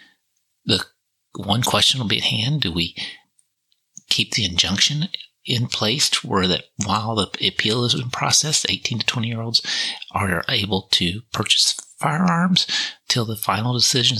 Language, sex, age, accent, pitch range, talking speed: English, male, 30-49, American, 95-130 Hz, 155 wpm